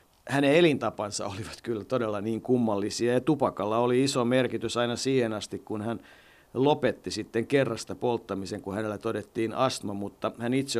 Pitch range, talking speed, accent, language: 105-130 Hz, 155 wpm, native, Finnish